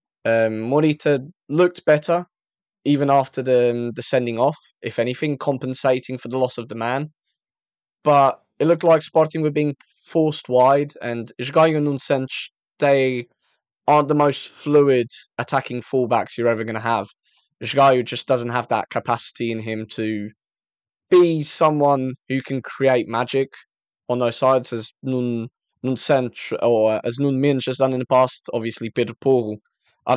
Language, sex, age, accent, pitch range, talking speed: English, male, 20-39, British, 120-145 Hz, 155 wpm